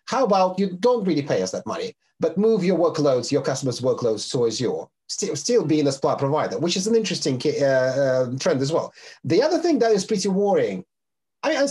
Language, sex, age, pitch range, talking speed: English, male, 30-49, 160-220 Hz, 220 wpm